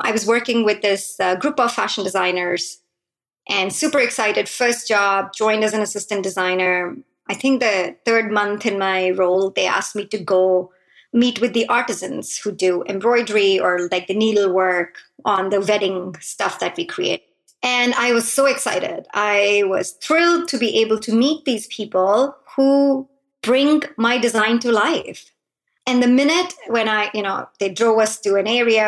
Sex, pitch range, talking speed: male, 190-240 Hz, 175 wpm